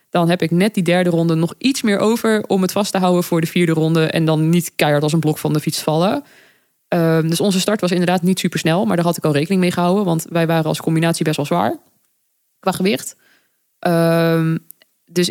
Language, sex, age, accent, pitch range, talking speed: Dutch, female, 20-39, Dutch, 160-215 Hz, 225 wpm